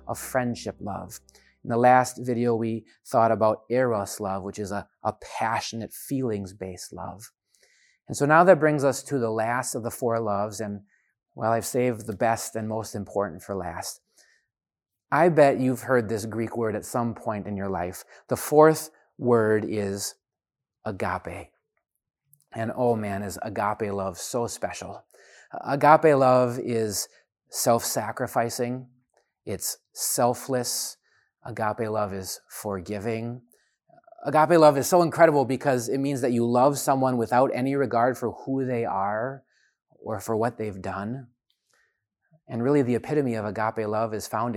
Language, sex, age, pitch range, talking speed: English, male, 30-49, 105-130 Hz, 150 wpm